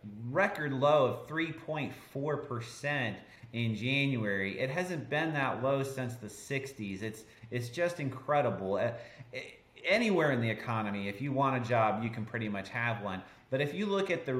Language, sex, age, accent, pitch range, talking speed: English, male, 30-49, American, 120-160 Hz, 165 wpm